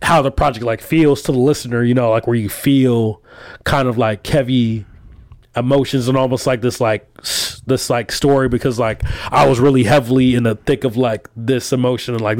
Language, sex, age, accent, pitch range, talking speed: English, male, 20-39, American, 115-140 Hz, 205 wpm